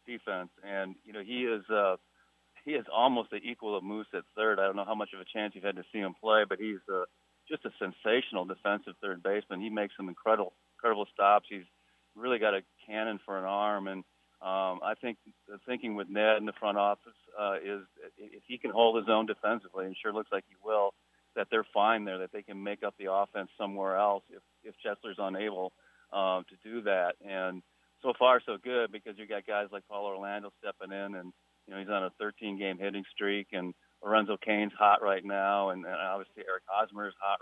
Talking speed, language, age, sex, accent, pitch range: 225 wpm, English, 40-59, male, American, 95-105 Hz